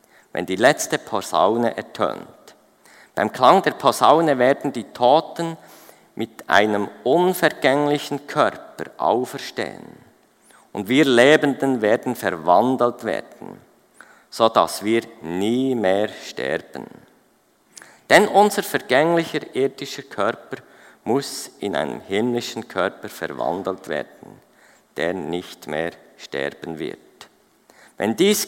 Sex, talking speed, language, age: male, 100 wpm, German, 50-69